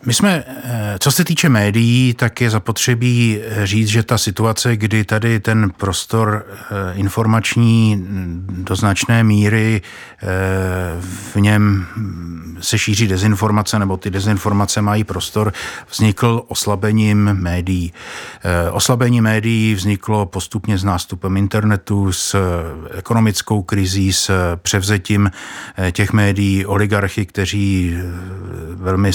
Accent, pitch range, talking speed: native, 95-110 Hz, 105 wpm